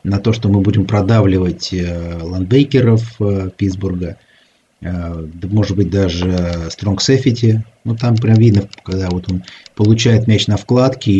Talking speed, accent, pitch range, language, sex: 140 wpm, native, 95-120 Hz, Russian, male